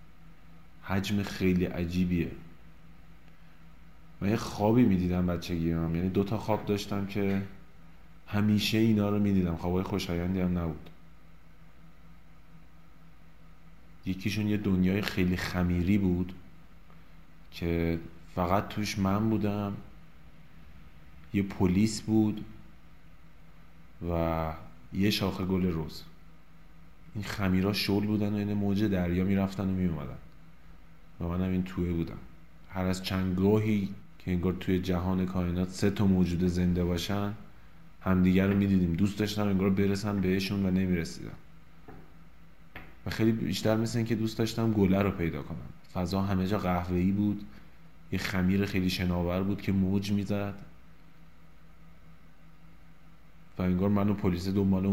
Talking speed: 130 wpm